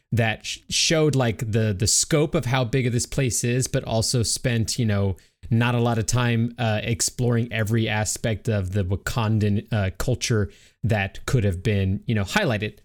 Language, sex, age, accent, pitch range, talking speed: English, male, 20-39, American, 105-130 Hz, 180 wpm